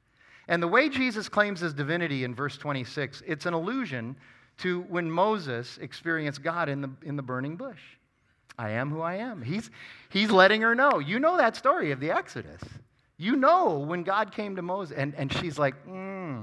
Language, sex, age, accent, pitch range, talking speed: English, male, 40-59, American, 130-190 Hz, 190 wpm